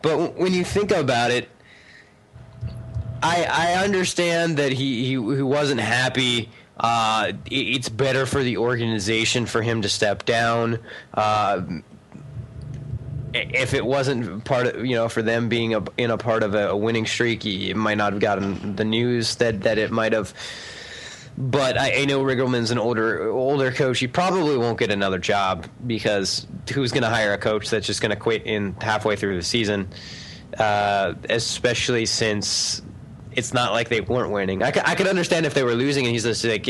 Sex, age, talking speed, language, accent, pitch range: male, 20-39, 185 wpm, English, American, 110-130 Hz